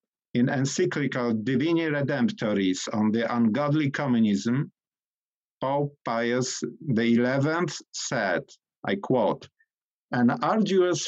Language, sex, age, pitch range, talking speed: English, male, 50-69, 120-155 Hz, 85 wpm